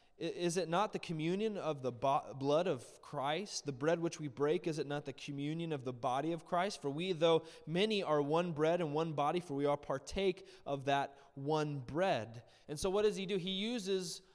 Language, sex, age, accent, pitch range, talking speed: English, male, 20-39, American, 145-210 Hz, 215 wpm